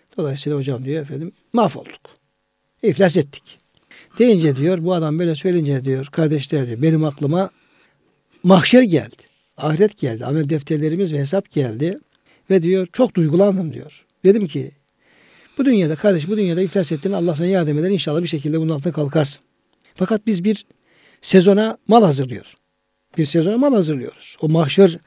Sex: male